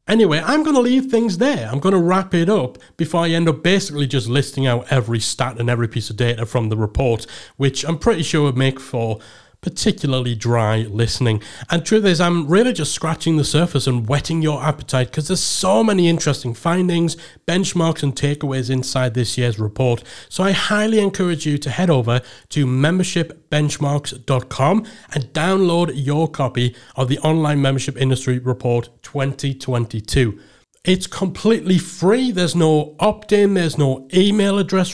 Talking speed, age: 170 wpm, 30-49